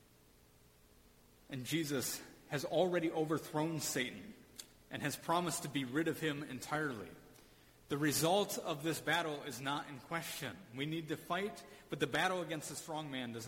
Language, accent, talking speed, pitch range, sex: English, American, 160 wpm, 130-165 Hz, male